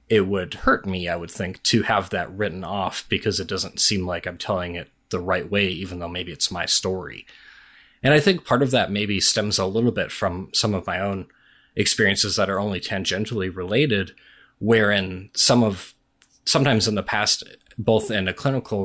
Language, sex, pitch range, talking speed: English, male, 95-120 Hz, 195 wpm